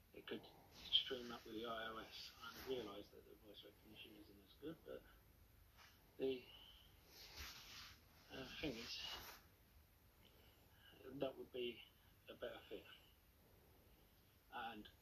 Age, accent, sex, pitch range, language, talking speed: 40-59, British, male, 90-125 Hz, English, 110 wpm